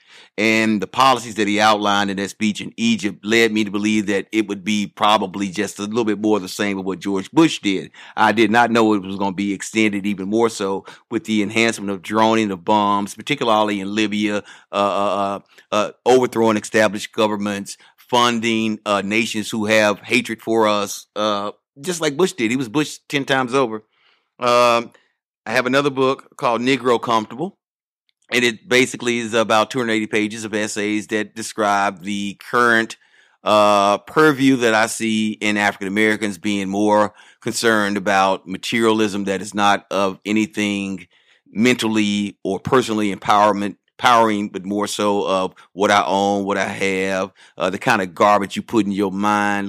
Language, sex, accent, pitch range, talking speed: English, male, American, 100-115 Hz, 180 wpm